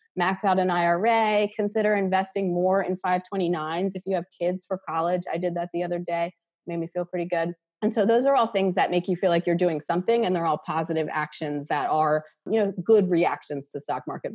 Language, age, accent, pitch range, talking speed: English, 30-49, American, 165-195 Hz, 230 wpm